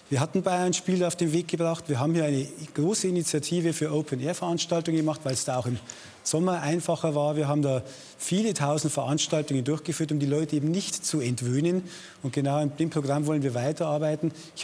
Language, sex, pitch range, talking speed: German, male, 145-175 Hz, 195 wpm